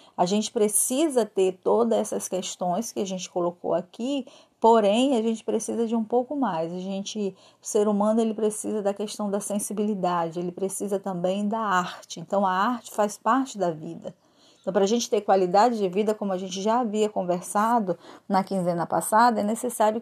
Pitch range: 190-255 Hz